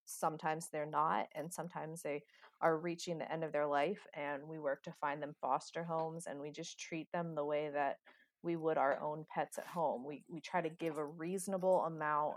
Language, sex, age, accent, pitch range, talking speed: English, female, 30-49, American, 150-175 Hz, 215 wpm